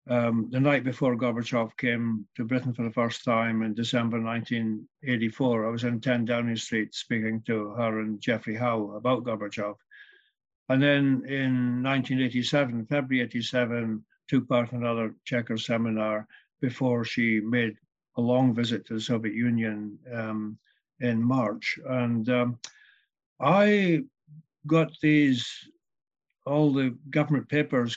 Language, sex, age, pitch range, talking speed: English, male, 60-79, 115-130 Hz, 135 wpm